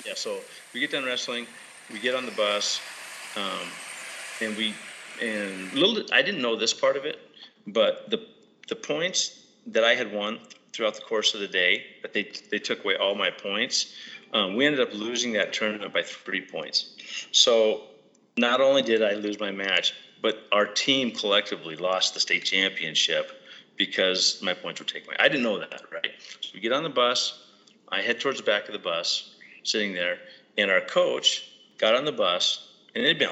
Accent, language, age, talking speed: American, English, 30-49, 195 wpm